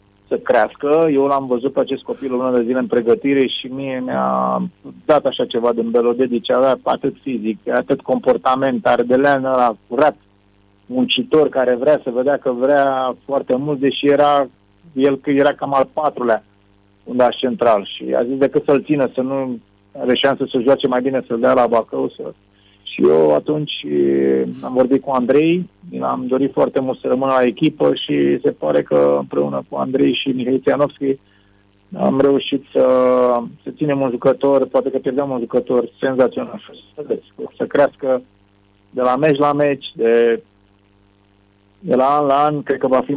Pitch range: 100-135 Hz